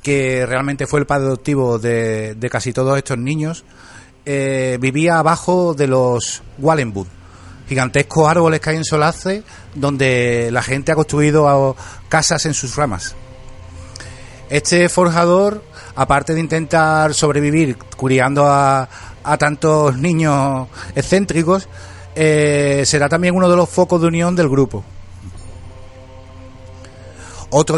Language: Spanish